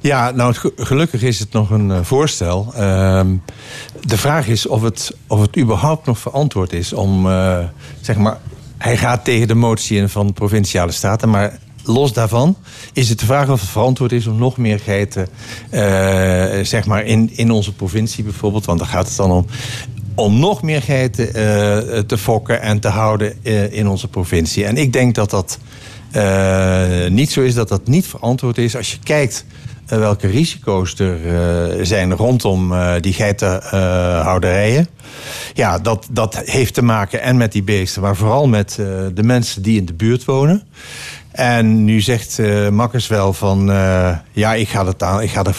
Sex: male